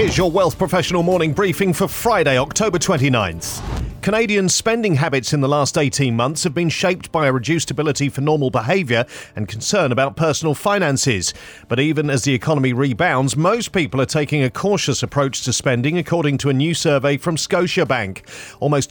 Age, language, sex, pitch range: 40-59, English, male, 125-160 Hz